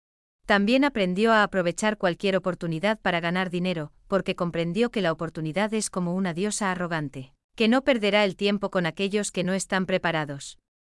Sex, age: female, 30-49